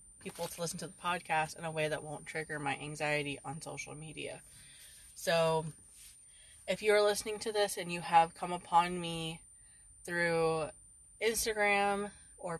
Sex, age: female, 20-39